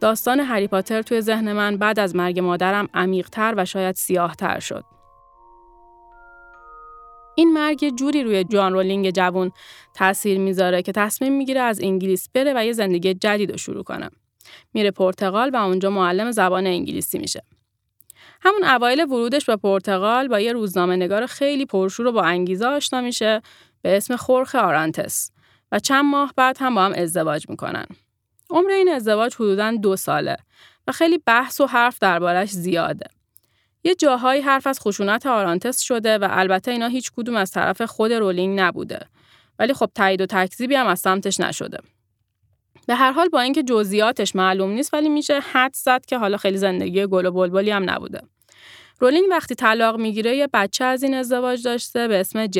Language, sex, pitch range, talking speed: Persian, female, 185-250 Hz, 160 wpm